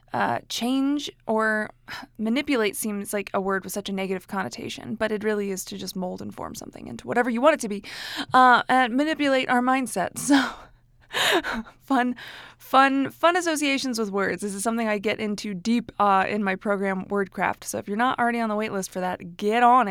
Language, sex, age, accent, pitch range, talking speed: English, female, 20-39, American, 210-285 Hz, 200 wpm